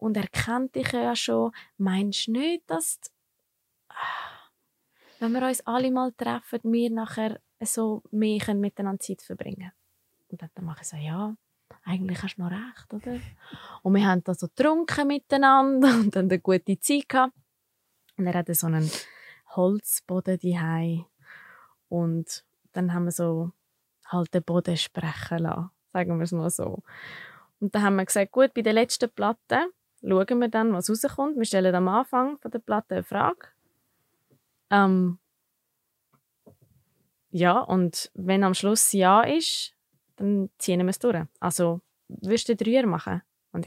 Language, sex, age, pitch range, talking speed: German, female, 20-39, 175-230 Hz, 155 wpm